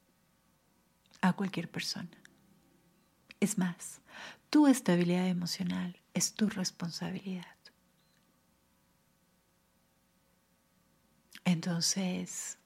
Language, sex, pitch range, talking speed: Spanish, female, 170-195 Hz, 55 wpm